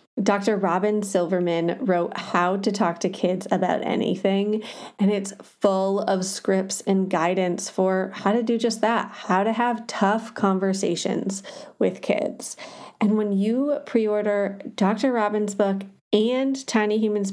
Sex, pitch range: female, 190-220 Hz